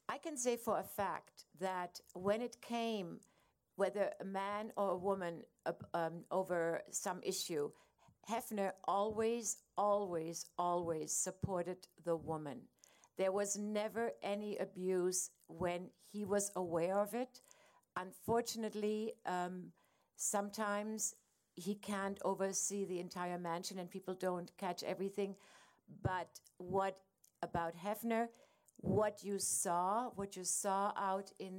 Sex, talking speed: female, 120 wpm